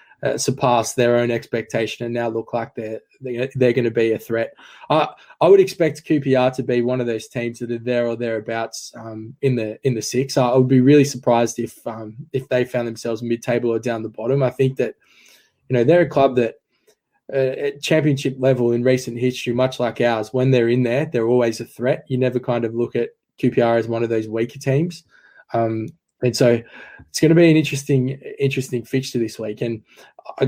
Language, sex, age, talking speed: English, male, 20-39, 215 wpm